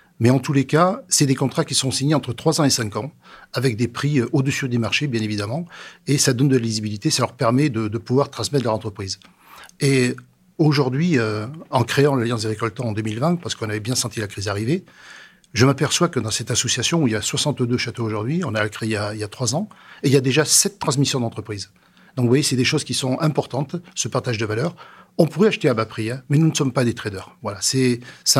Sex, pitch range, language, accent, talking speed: male, 115-150 Hz, French, French, 245 wpm